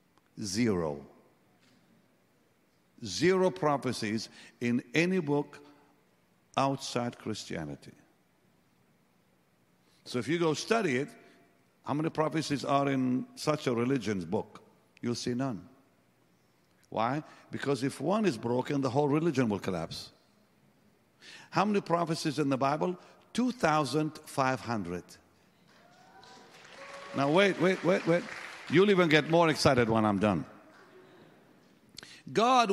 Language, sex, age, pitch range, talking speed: English, male, 50-69, 120-175 Hz, 105 wpm